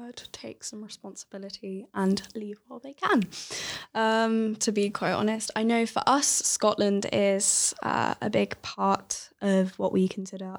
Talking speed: 160 wpm